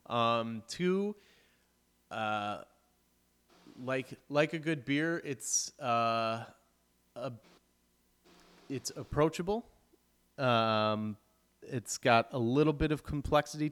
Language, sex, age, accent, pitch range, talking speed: English, male, 30-49, American, 95-120 Hz, 90 wpm